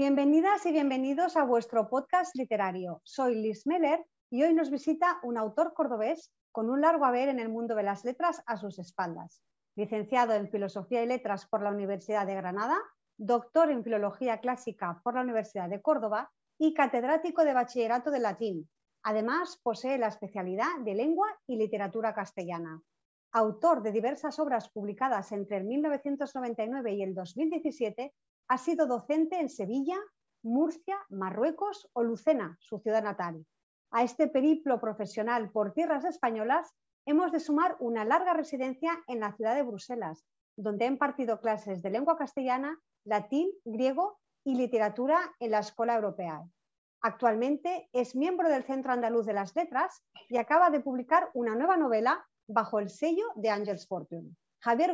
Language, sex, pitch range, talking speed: Spanish, female, 215-305 Hz, 155 wpm